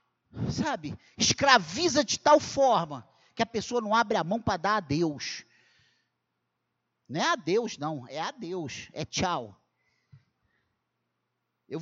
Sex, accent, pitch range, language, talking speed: male, Brazilian, 205-275 Hz, Portuguese, 135 wpm